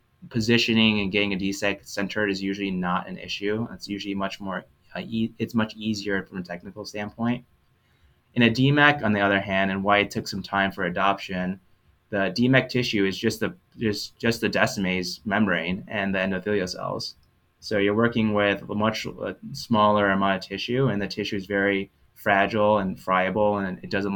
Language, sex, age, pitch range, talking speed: English, male, 20-39, 95-110 Hz, 180 wpm